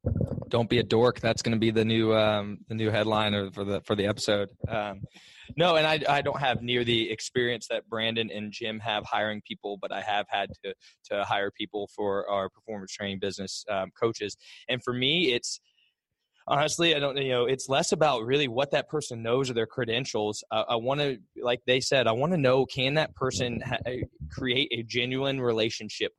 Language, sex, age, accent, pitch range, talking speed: English, male, 20-39, American, 105-130 Hz, 205 wpm